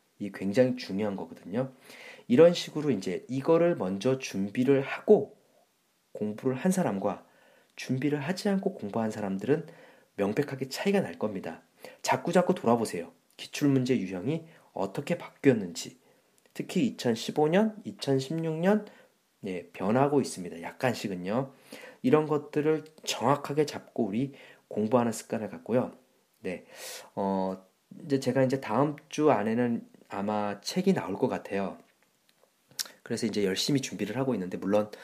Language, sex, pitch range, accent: Korean, male, 105-160 Hz, native